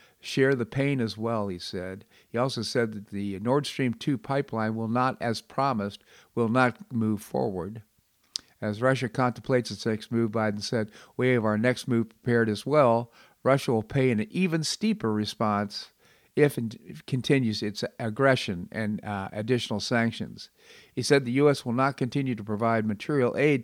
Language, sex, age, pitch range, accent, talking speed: English, male, 50-69, 110-135 Hz, American, 170 wpm